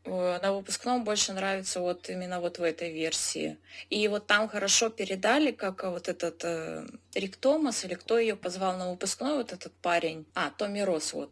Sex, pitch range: female, 175-210 Hz